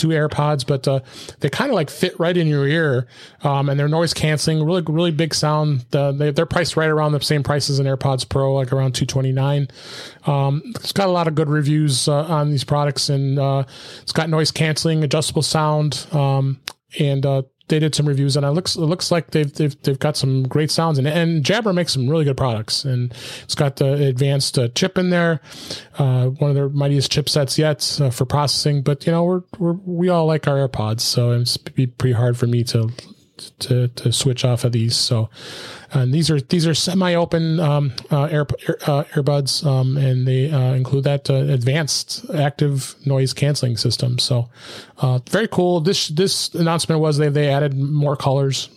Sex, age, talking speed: male, 30-49, 200 wpm